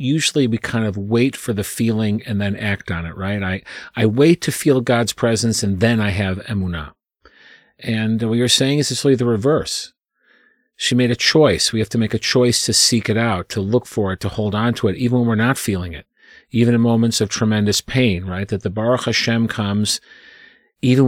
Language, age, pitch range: English, 40-59, 105-120 Hz